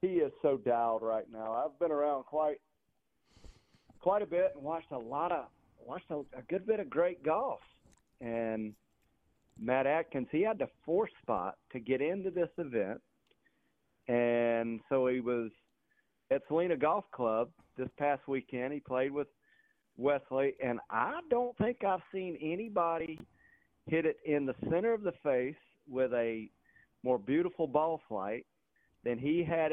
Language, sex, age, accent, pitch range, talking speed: English, male, 40-59, American, 125-165 Hz, 155 wpm